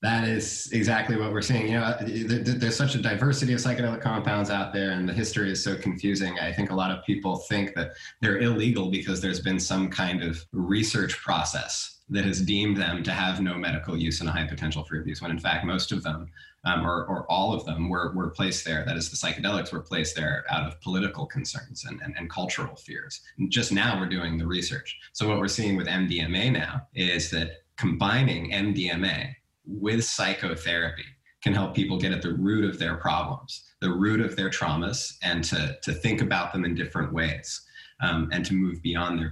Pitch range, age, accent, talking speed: 90-115 Hz, 30-49, American, 210 wpm